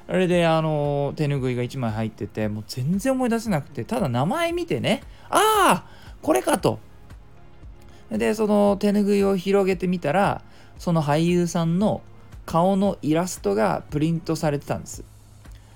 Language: Japanese